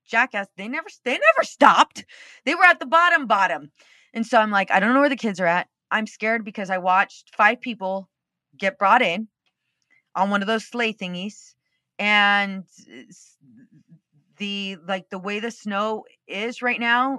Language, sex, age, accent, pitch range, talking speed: English, female, 30-49, American, 175-235 Hz, 175 wpm